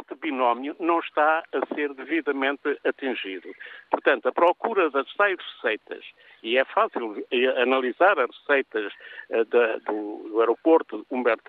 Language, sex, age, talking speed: Portuguese, male, 50-69, 110 wpm